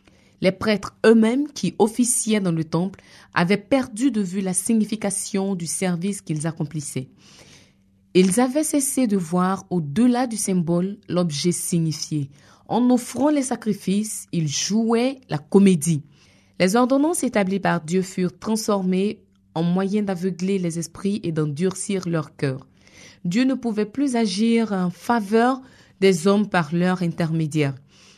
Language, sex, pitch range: French, female, 165-215 Hz